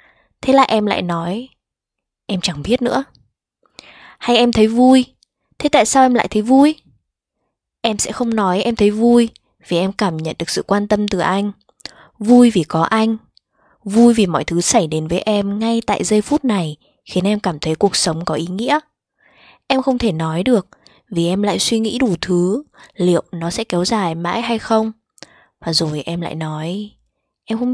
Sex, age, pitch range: female, 20-39, 180-240 Hz